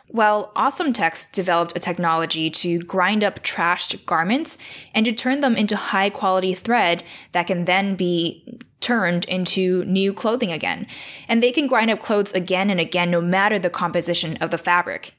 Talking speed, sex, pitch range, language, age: 170 wpm, female, 175-225 Hz, English, 10-29